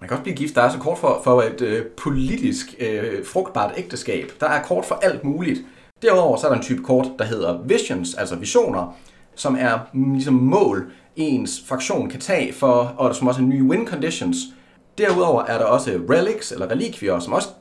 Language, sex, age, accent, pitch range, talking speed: Danish, male, 30-49, native, 120-180 Hz, 215 wpm